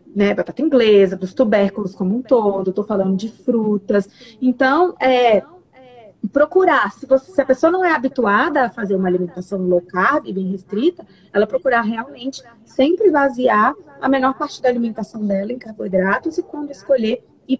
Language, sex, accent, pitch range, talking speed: Portuguese, female, Brazilian, 205-280 Hz, 165 wpm